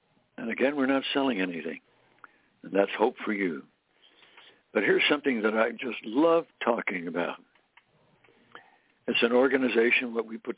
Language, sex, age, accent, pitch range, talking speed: English, male, 60-79, American, 120-165 Hz, 145 wpm